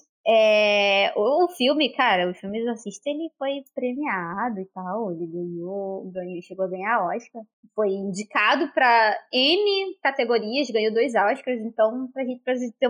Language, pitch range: Portuguese, 210-290 Hz